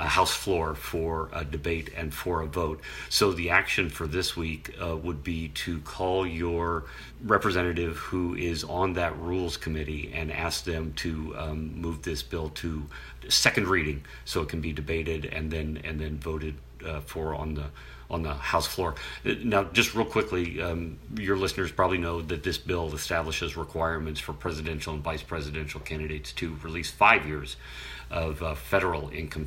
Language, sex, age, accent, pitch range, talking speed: English, male, 40-59, American, 75-85 Hz, 175 wpm